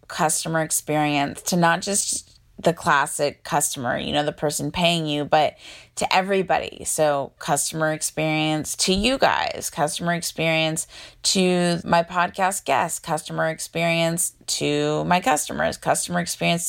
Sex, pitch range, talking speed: female, 155-180 Hz, 130 wpm